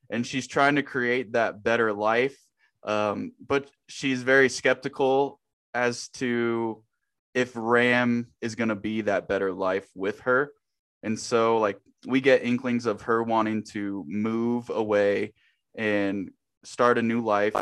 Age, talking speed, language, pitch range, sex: 20-39, 145 wpm, English, 110-130 Hz, male